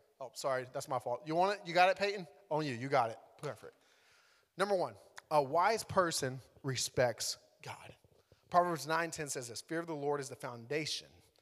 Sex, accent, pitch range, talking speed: male, American, 140-175 Hz, 195 wpm